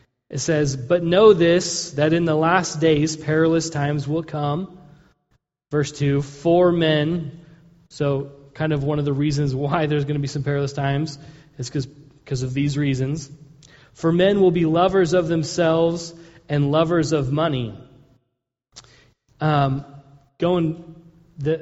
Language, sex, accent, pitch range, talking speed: English, male, American, 140-165 Hz, 145 wpm